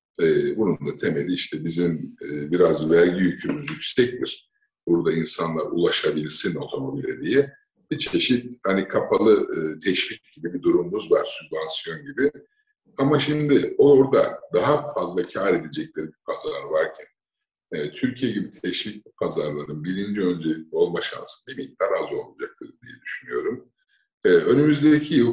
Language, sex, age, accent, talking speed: Turkish, male, 50-69, native, 135 wpm